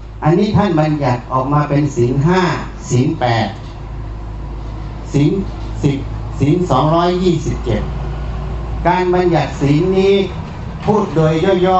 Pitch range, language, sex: 125-170 Hz, Thai, male